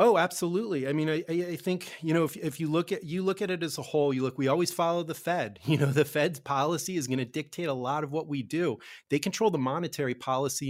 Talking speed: 270 wpm